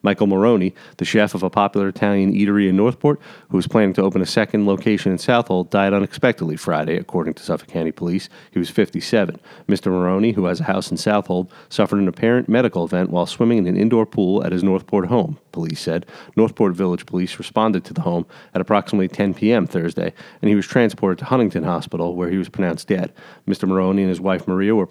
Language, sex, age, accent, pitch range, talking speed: English, male, 30-49, American, 90-110 Hz, 210 wpm